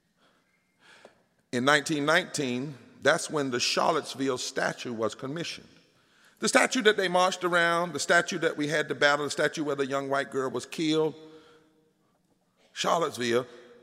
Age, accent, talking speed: 50-69, American, 140 wpm